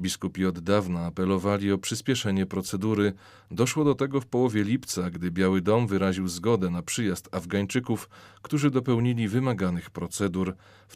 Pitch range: 95-115 Hz